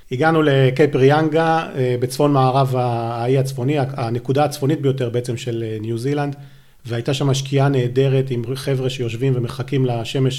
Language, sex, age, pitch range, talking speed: Hebrew, male, 40-59, 125-145 Hz, 125 wpm